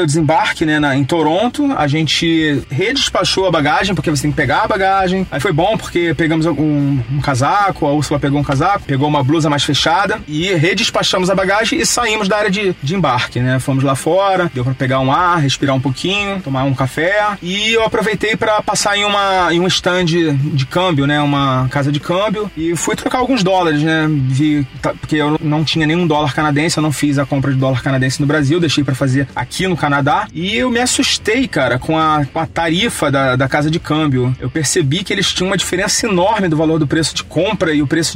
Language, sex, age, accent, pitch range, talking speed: Portuguese, male, 30-49, Brazilian, 145-180 Hz, 220 wpm